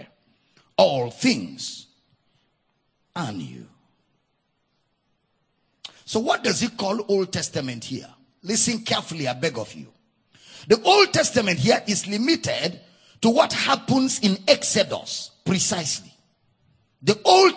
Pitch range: 155-225 Hz